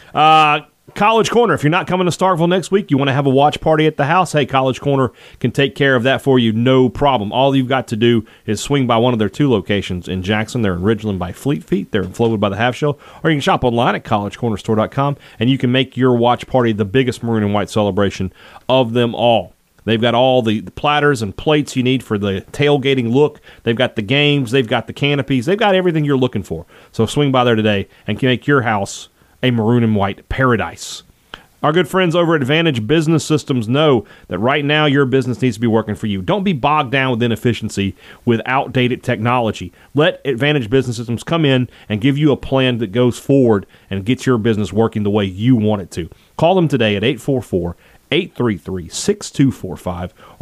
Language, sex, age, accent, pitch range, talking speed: English, male, 40-59, American, 110-140 Hz, 220 wpm